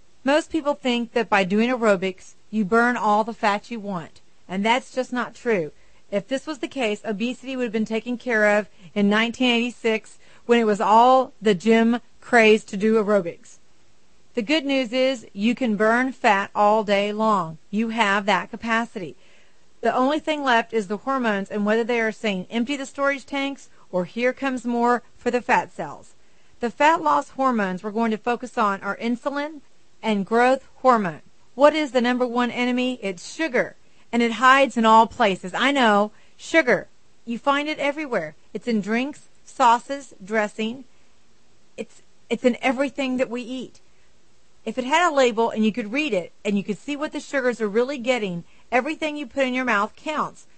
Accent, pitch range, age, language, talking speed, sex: American, 215-265 Hz, 40-59, English, 185 wpm, female